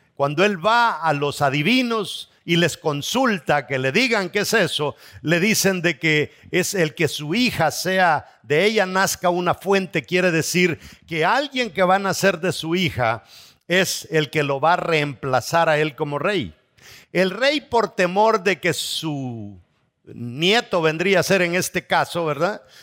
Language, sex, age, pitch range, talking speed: English, male, 50-69, 155-215 Hz, 175 wpm